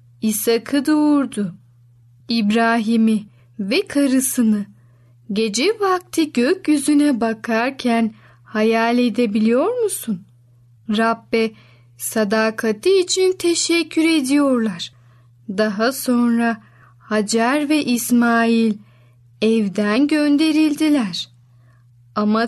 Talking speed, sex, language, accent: 65 wpm, female, Turkish, native